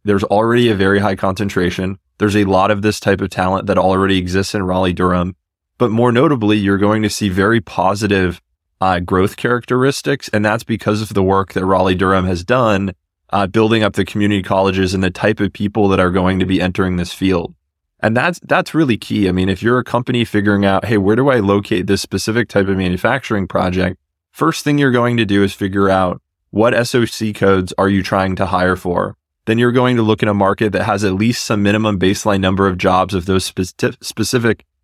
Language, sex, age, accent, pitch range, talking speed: English, male, 20-39, American, 95-110 Hz, 210 wpm